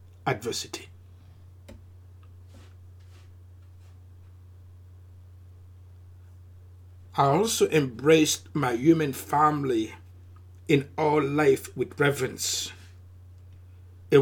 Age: 60-79